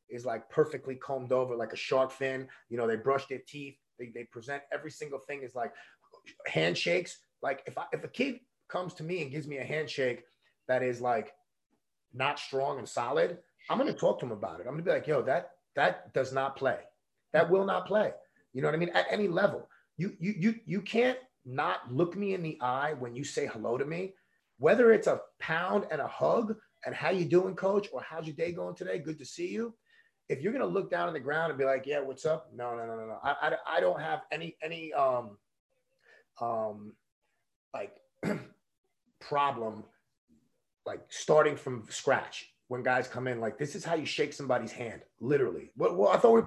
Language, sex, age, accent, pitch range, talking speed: English, male, 30-49, American, 130-205 Hz, 215 wpm